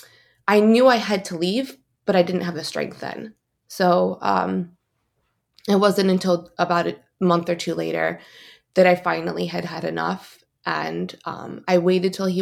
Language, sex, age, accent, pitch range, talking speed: English, female, 20-39, American, 165-190 Hz, 175 wpm